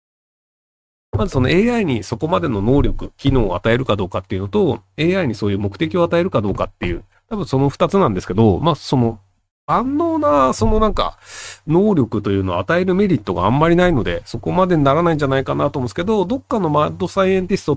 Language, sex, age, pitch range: Japanese, male, 40-59, 115-185 Hz